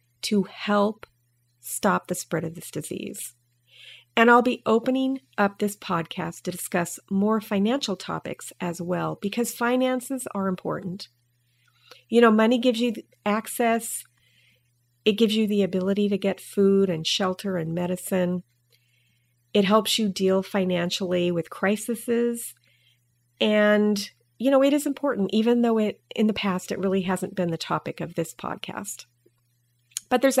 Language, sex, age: English, female, 40-59